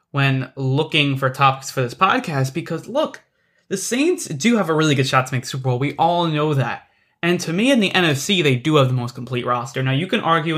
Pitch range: 135-175 Hz